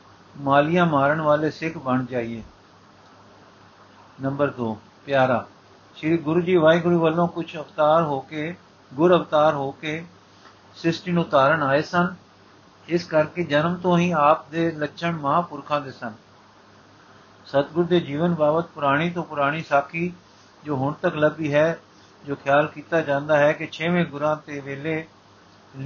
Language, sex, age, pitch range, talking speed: Punjabi, male, 50-69, 135-165 Hz, 140 wpm